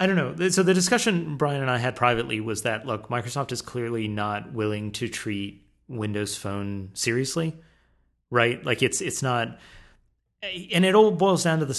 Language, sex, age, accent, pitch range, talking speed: English, male, 30-49, American, 110-150 Hz, 185 wpm